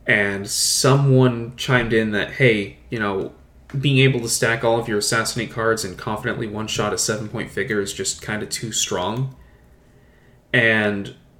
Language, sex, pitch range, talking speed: English, male, 105-130 Hz, 160 wpm